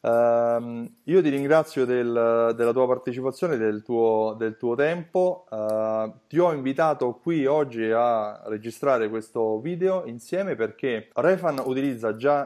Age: 30-49